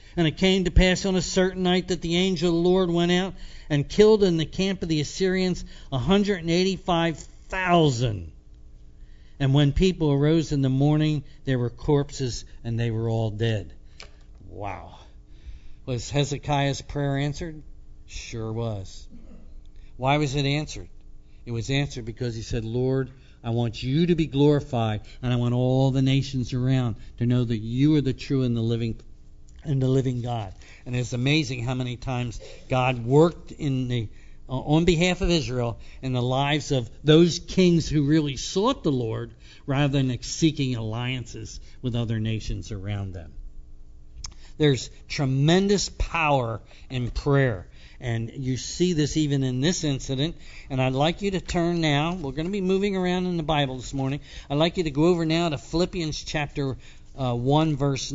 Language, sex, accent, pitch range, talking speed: English, male, American, 115-155 Hz, 170 wpm